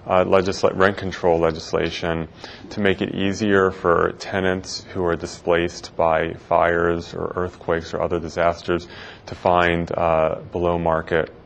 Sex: male